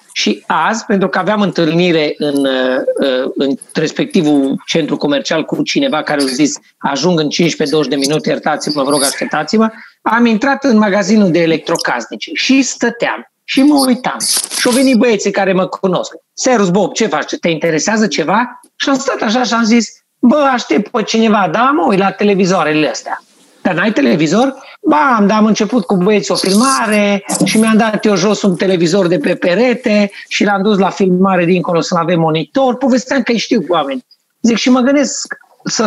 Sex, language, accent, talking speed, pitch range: male, Romanian, native, 175 wpm, 165-235 Hz